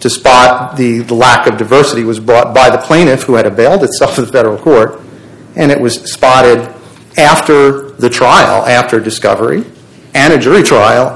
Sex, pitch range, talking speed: male, 115-130 Hz, 175 wpm